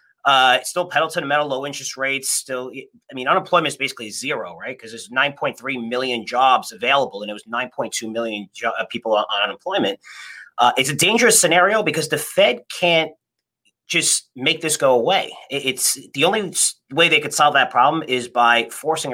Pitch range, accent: 125-170 Hz, American